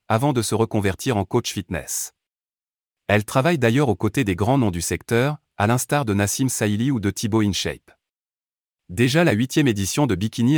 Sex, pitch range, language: male, 100-130 Hz, French